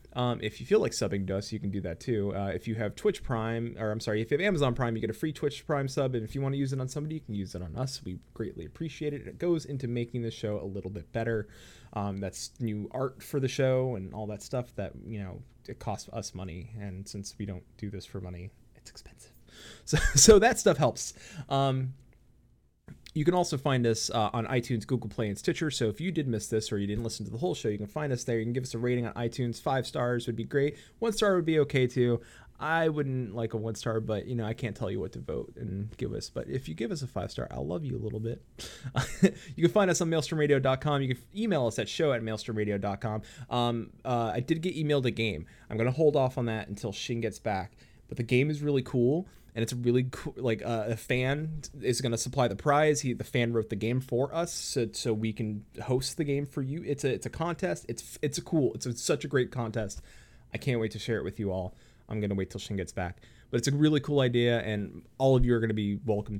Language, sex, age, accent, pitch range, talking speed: English, male, 20-39, American, 105-135 Hz, 265 wpm